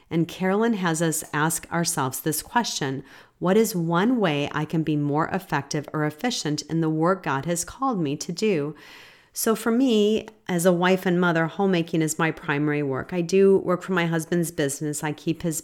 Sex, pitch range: female, 150-185 Hz